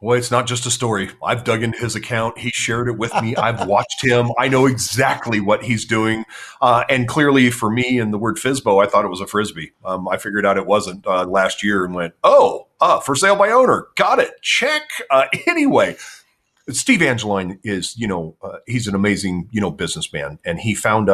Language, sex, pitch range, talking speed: English, male, 100-130 Hz, 220 wpm